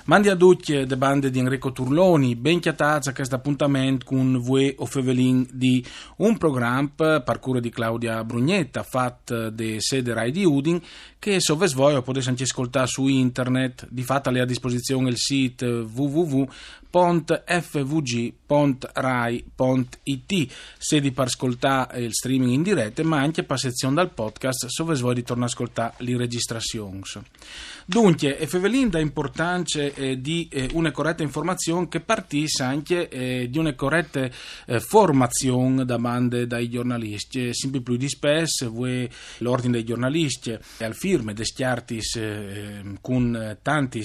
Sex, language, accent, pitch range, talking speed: male, Italian, native, 120-145 Hz, 140 wpm